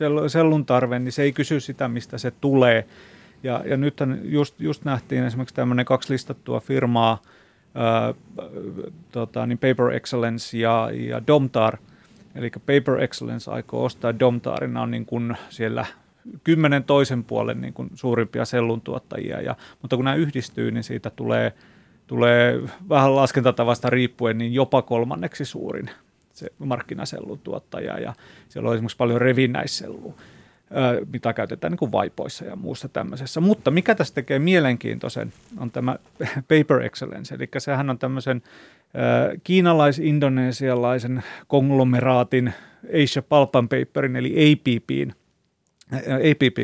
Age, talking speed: 30-49, 125 wpm